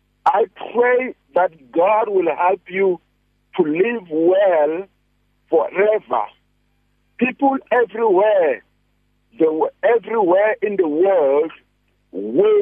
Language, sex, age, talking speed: English, male, 50-69, 85 wpm